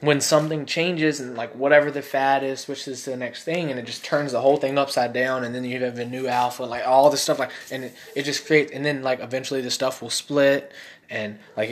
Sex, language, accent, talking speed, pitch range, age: male, English, American, 255 wpm, 120-145 Hz, 20-39